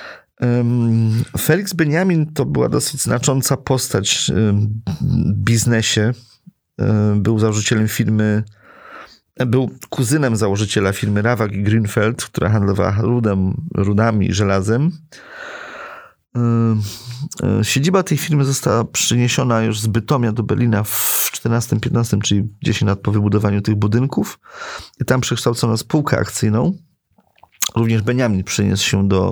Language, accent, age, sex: Polish, native, 30-49, male